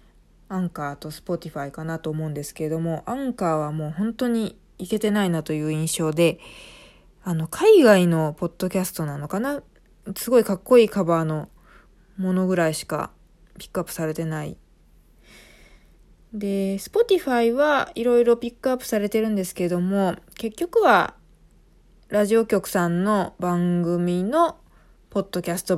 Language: Japanese